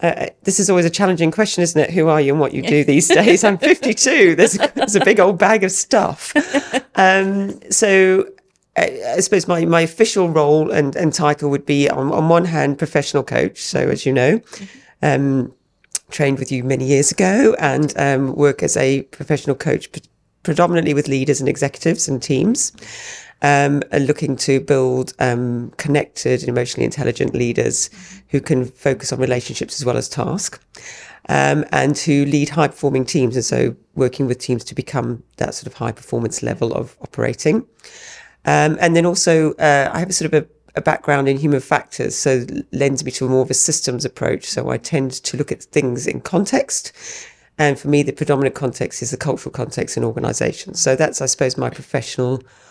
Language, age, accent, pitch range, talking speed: English, 40-59, British, 135-175 Hz, 190 wpm